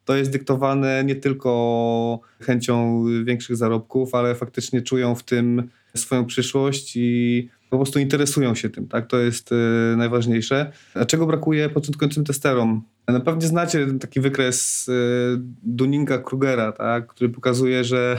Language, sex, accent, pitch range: Polish, male, native, 120-135 Hz